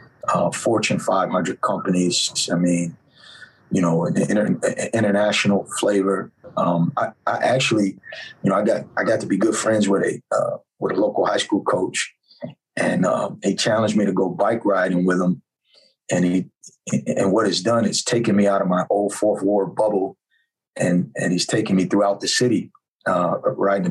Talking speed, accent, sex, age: 180 wpm, American, male, 30-49